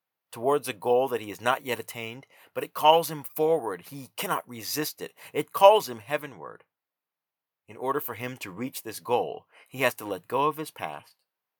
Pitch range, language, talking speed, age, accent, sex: 125-165 Hz, English, 195 wpm, 50-69, American, male